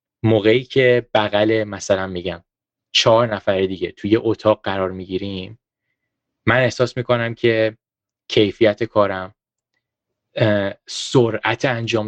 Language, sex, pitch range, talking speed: Persian, male, 105-125 Hz, 105 wpm